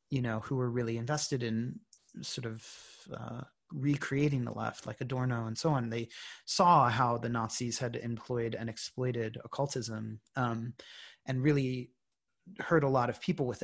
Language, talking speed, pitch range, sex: English, 165 wpm, 115-145 Hz, male